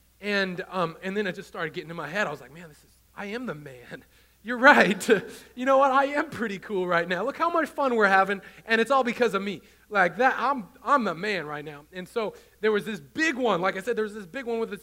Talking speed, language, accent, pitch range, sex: 280 wpm, English, American, 185-245 Hz, male